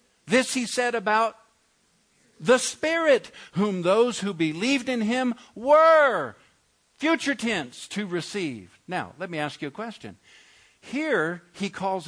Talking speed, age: 135 wpm, 50-69